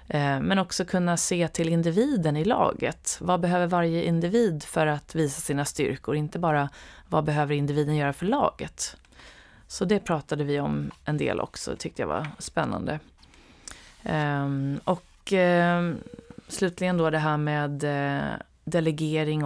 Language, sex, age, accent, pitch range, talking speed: Swedish, female, 30-49, native, 150-180 Hz, 140 wpm